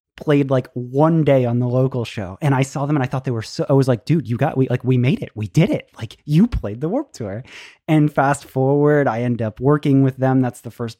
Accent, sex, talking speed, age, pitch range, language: American, male, 275 wpm, 20-39, 125-150 Hz, English